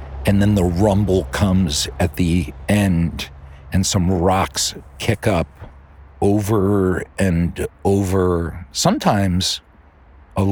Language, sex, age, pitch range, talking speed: English, male, 50-69, 80-100 Hz, 105 wpm